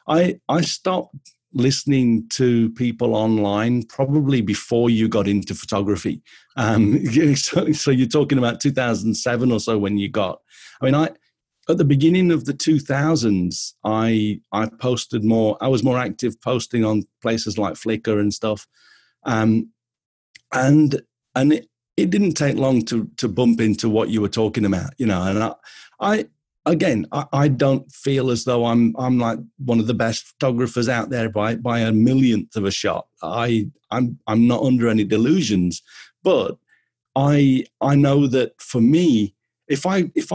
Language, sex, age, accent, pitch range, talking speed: English, male, 50-69, British, 110-140 Hz, 170 wpm